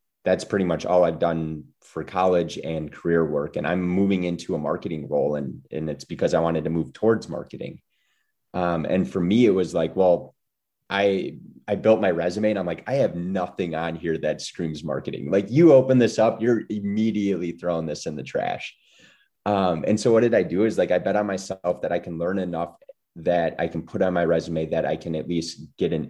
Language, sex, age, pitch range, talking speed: English, male, 30-49, 80-95 Hz, 220 wpm